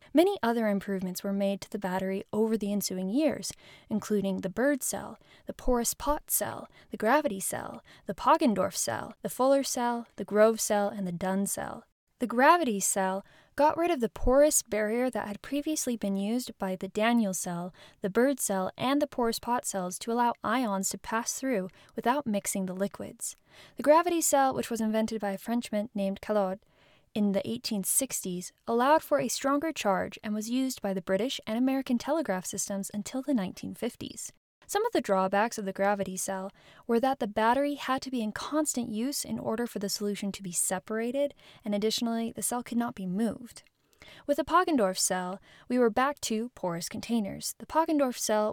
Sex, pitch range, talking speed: female, 195-255 Hz, 185 wpm